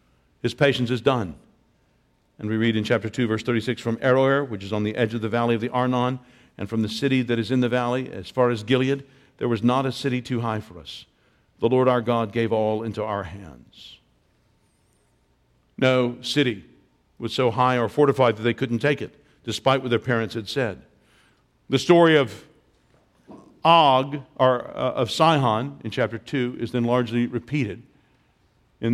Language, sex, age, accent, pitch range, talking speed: English, male, 50-69, American, 110-130 Hz, 185 wpm